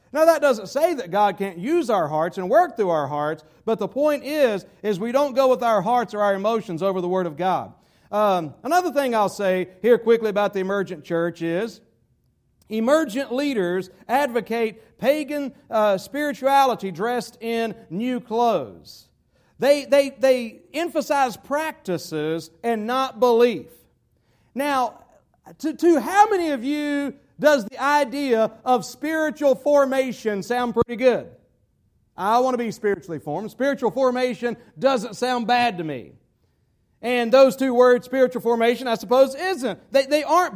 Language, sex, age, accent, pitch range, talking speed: English, male, 50-69, American, 210-275 Hz, 155 wpm